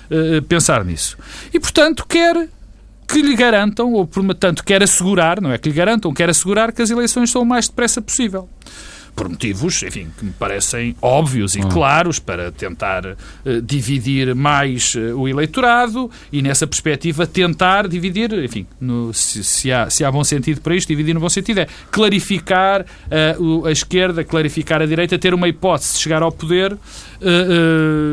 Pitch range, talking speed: 145-195 Hz, 170 wpm